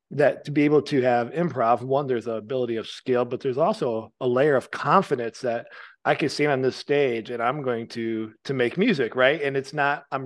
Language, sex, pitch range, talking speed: English, male, 125-160 Hz, 230 wpm